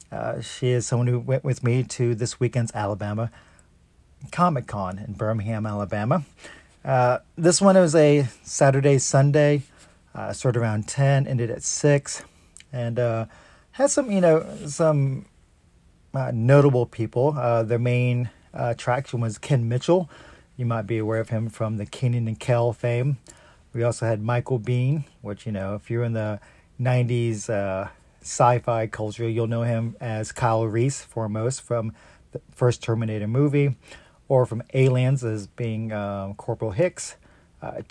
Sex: male